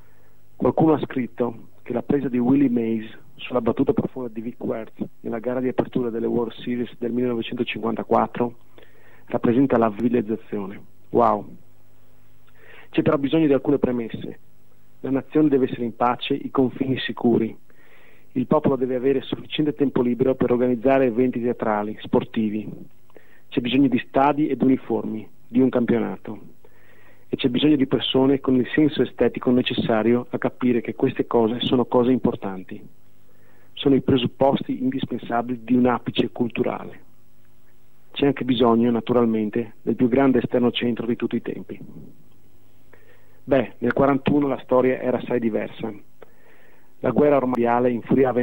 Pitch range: 115-130 Hz